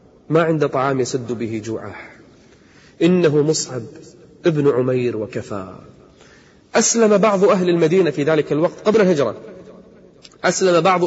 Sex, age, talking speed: male, 30-49, 120 wpm